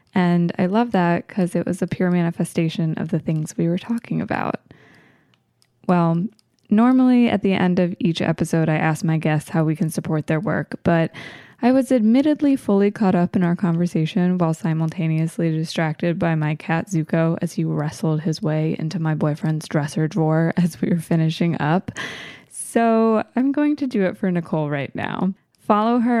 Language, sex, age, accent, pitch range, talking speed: English, female, 20-39, American, 160-200 Hz, 180 wpm